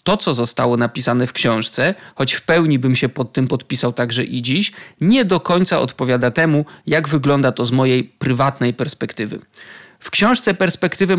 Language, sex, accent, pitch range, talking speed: Polish, male, native, 130-180 Hz, 170 wpm